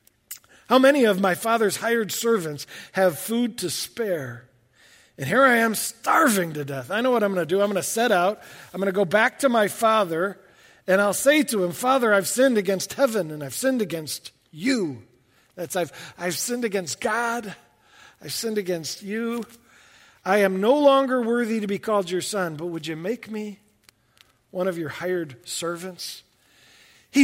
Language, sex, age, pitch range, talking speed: English, male, 50-69, 165-215 Hz, 185 wpm